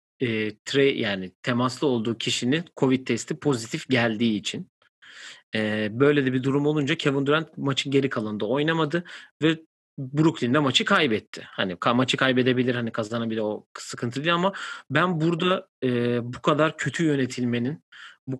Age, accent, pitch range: 40-59, native, 115-145 Hz